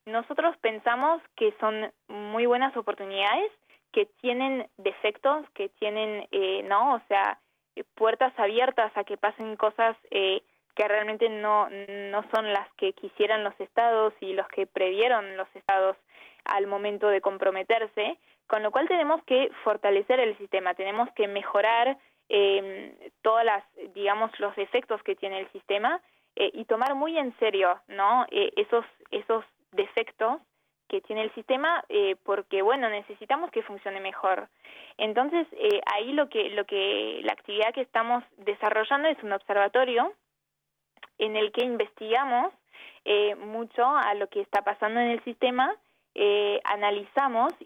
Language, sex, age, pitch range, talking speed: Spanish, female, 20-39, 205-260 Hz, 145 wpm